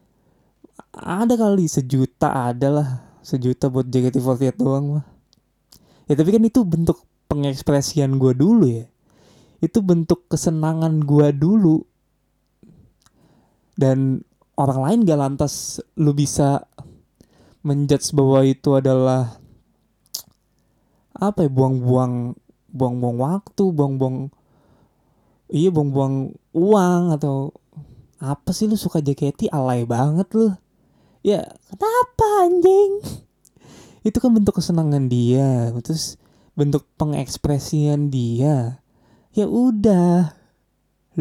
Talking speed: 95 wpm